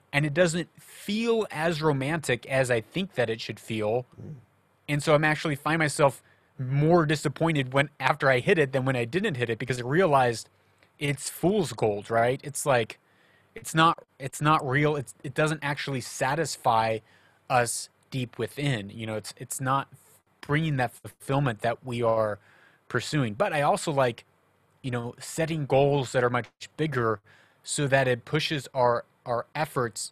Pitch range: 120-150 Hz